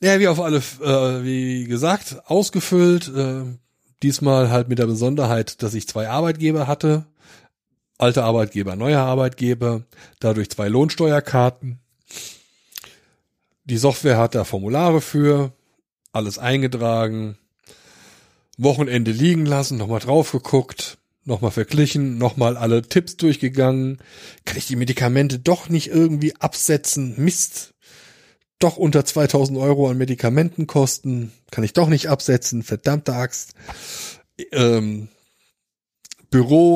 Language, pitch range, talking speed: German, 115-145 Hz, 115 wpm